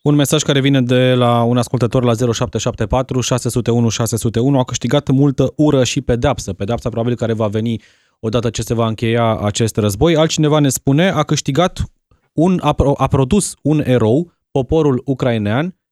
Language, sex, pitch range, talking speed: Romanian, male, 120-155 Hz, 150 wpm